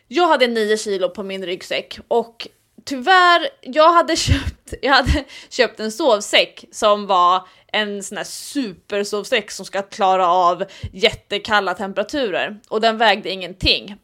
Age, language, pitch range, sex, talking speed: 20-39, English, 195-275 Hz, female, 140 wpm